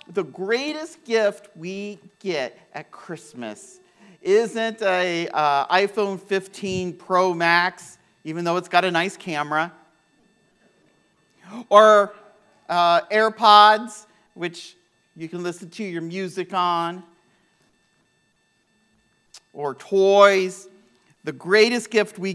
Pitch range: 145-195 Hz